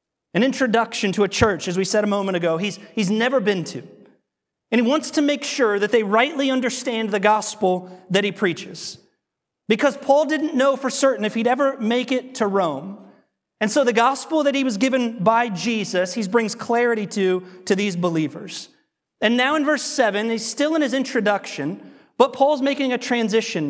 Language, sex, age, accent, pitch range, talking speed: English, male, 30-49, American, 195-250 Hz, 190 wpm